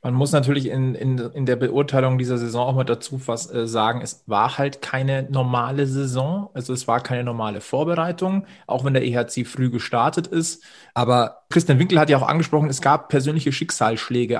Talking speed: 190 wpm